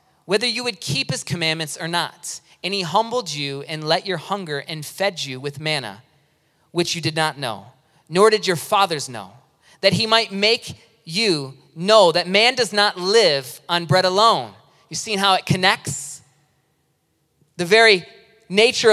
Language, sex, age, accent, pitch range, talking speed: English, male, 30-49, American, 150-205 Hz, 170 wpm